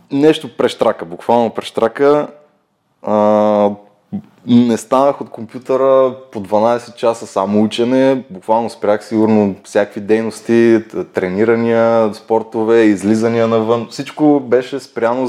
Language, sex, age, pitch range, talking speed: Bulgarian, male, 20-39, 105-125 Hz, 100 wpm